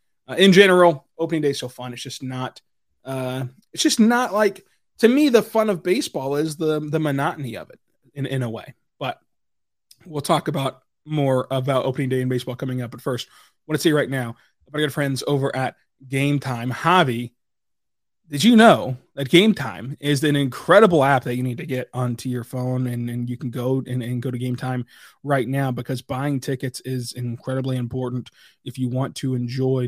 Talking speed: 205 wpm